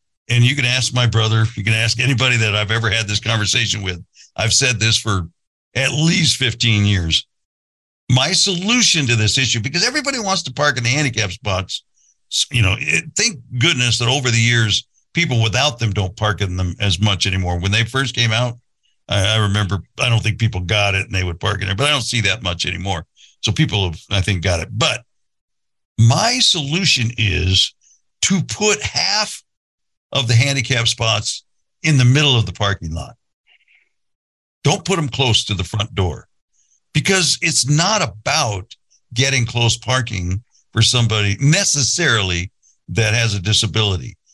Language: English